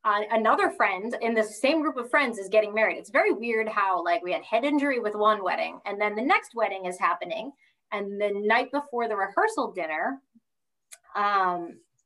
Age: 30-49